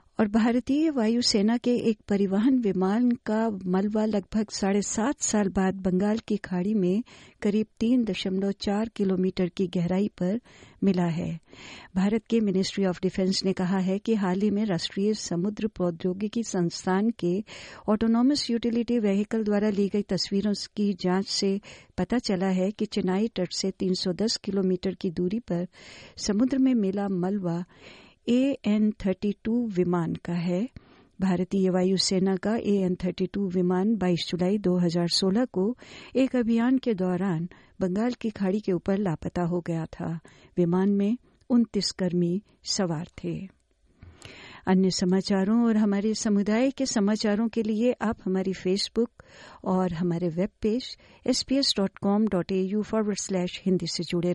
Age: 50-69